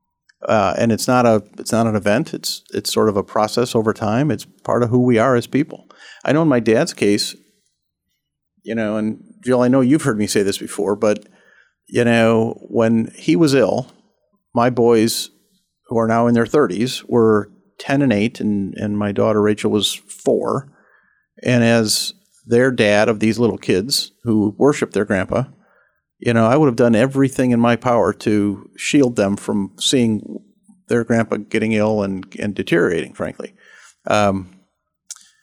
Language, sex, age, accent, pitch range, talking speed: English, male, 50-69, American, 105-125 Hz, 180 wpm